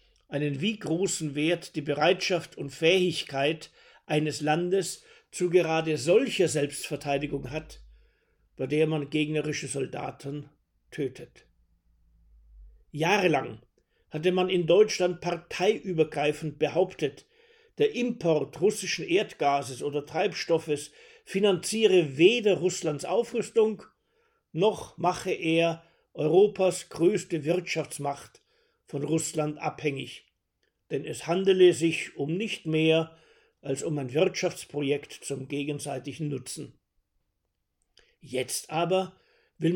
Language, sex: German, male